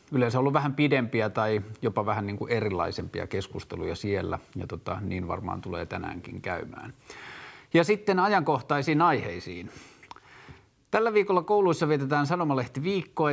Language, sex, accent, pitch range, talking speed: Finnish, male, native, 110-145 Hz, 120 wpm